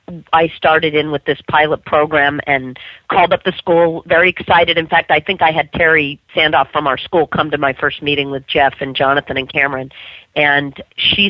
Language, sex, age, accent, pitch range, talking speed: English, female, 40-59, American, 140-165 Hz, 200 wpm